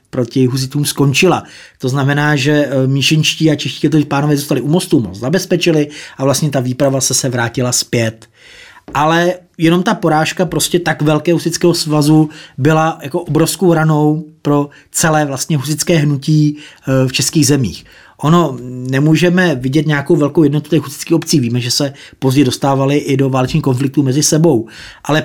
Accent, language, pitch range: native, Czech, 140-160 Hz